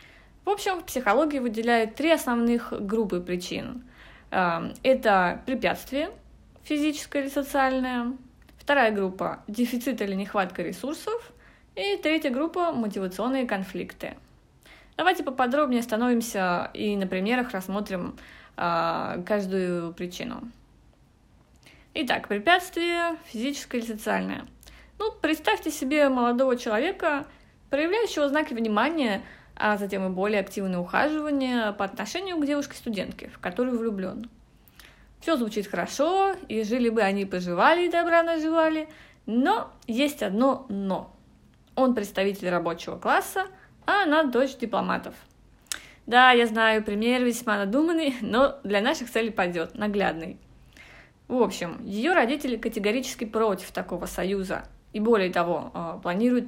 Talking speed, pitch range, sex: 115 wpm, 200-290 Hz, female